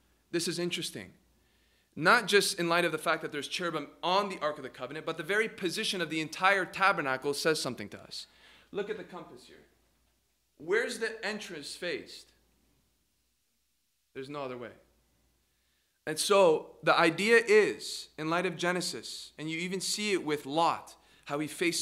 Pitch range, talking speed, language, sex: 155-210 Hz, 175 wpm, English, male